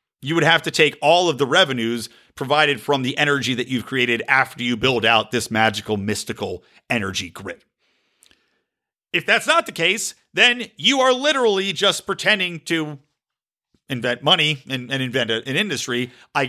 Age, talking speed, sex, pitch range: 50-69, 165 wpm, male, 155-255 Hz